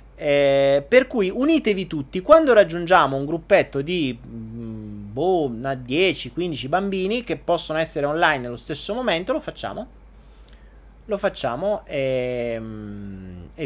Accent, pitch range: native, 115-165 Hz